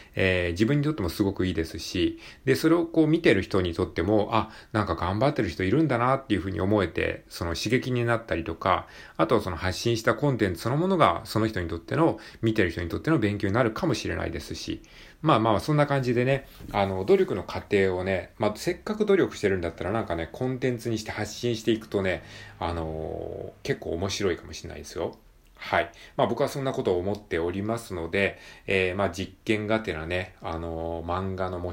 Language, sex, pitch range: Japanese, male, 85-110 Hz